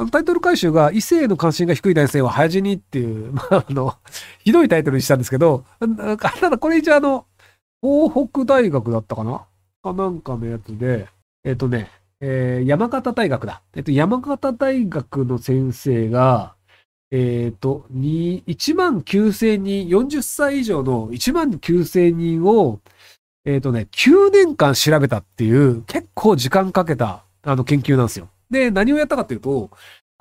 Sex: male